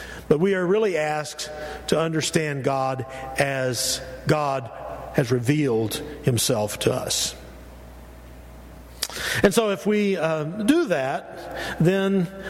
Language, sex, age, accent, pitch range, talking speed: English, male, 50-69, American, 140-180 Hz, 110 wpm